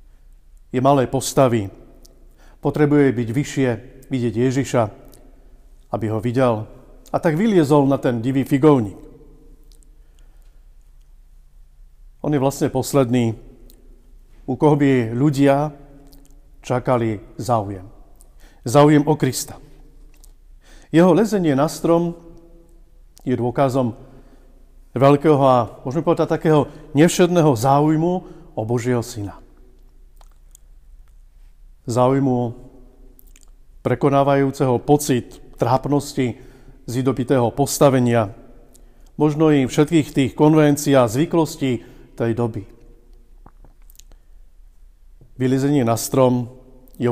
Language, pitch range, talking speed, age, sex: Slovak, 115-150 Hz, 85 wpm, 50-69, male